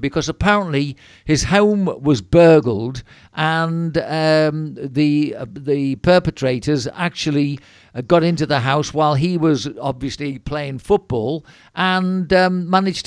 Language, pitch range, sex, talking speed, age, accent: English, 140-175 Hz, male, 120 wpm, 50-69, British